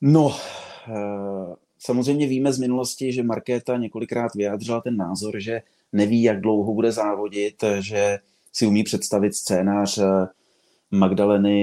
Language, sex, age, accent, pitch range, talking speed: Czech, male, 30-49, native, 95-110 Hz, 120 wpm